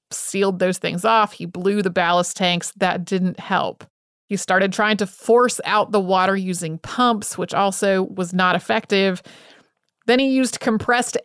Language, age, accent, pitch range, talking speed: English, 30-49, American, 185-215 Hz, 165 wpm